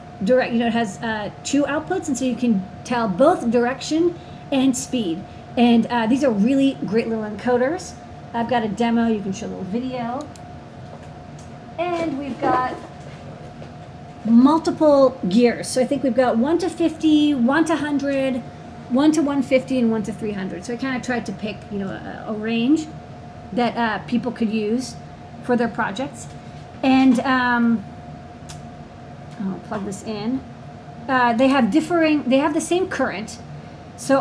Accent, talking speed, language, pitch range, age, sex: American, 165 wpm, English, 230-275 Hz, 40-59, female